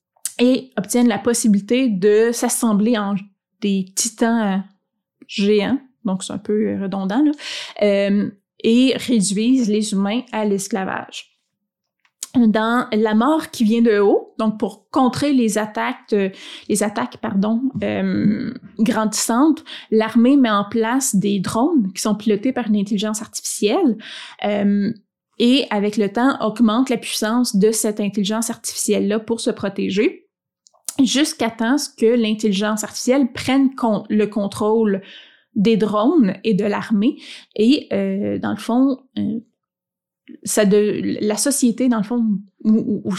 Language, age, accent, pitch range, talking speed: French, 20-39, Canadian, 205-250 Hz, 135 wpm